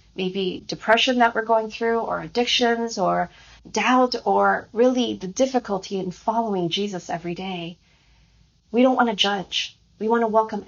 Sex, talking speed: female, 155 wpm